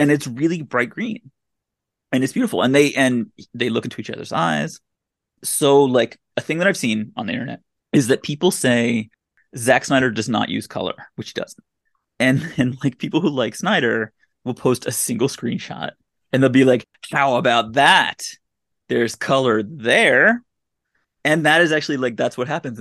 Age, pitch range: 30-49, 115-155 Hz